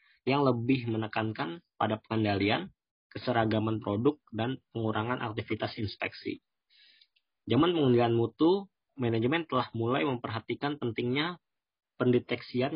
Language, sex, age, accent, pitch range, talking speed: Indonesian, male, 20-39, native, 110-130 Hz, 95 wpm